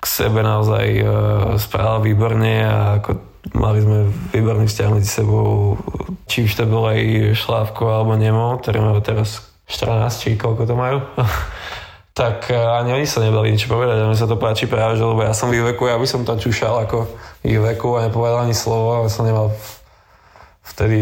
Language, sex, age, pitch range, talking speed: Slovak, male, 20-39, 105-115 Hz, 190 wpm